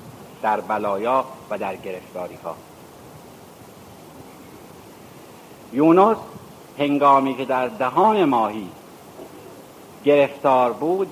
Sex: male